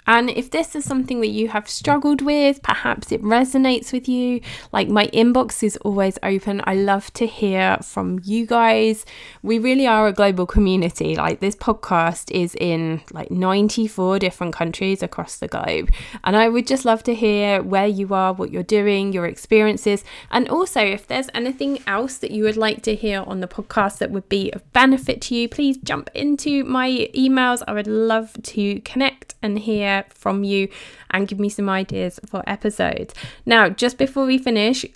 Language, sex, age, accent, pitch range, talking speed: English, female, 20-39, British, 195-240 Hz, 185 wpm